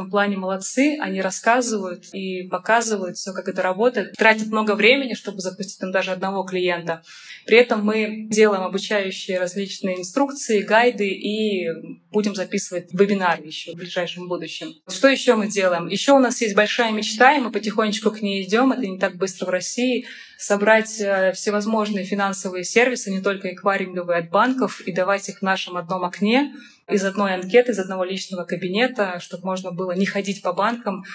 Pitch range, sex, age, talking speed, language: 185-215 Hz, female, 20-39, 170 wpm, Russian